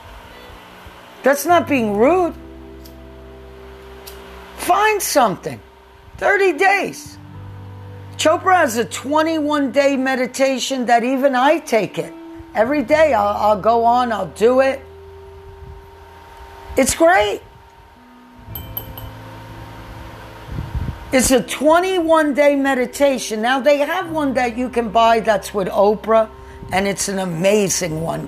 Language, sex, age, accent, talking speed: English, female, 50-69, American, 105 wpm